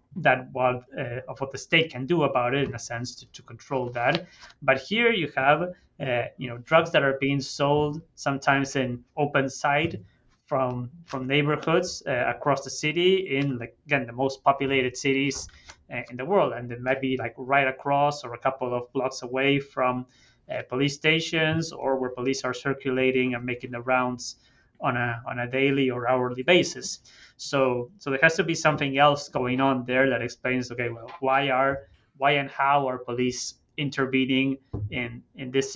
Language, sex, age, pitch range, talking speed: English, male, 20-39, 125-140 Hz, 190 wpm